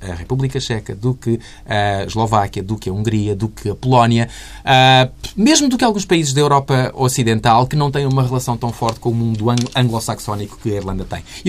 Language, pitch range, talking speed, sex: Portuguese, 110-145 Hz, 205 wpm, male